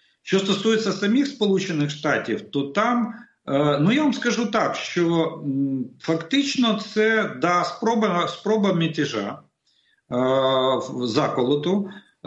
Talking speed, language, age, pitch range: 100 wpm, Russian, 50-69, 130-175 Hz